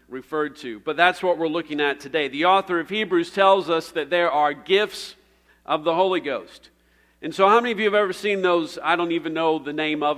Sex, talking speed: male, 235 wpm